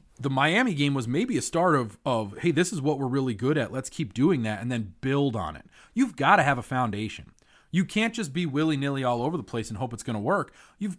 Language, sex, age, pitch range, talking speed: English, male, 30-49, 120-175 Hz, 260 wpm